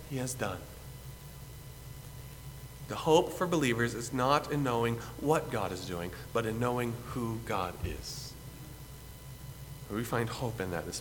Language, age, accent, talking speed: English, 40-59, American, 145 wpm